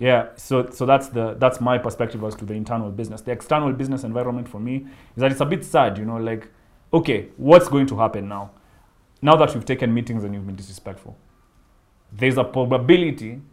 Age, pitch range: 30-49, 110-145 Hz